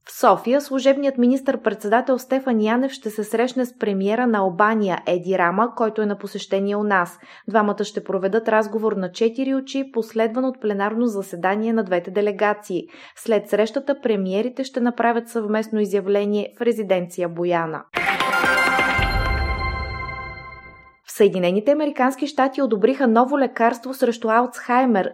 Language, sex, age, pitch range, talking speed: Bulgarian, female, 20-39, 205-245 Hz, 125 wpm